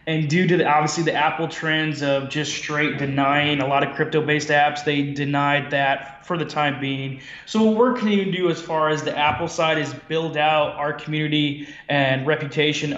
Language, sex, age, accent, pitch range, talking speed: English, male, 20-39, American, 140-155 Hz, 200 wpm